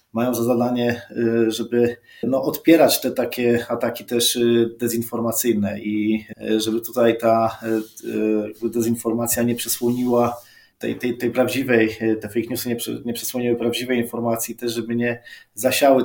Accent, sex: native, male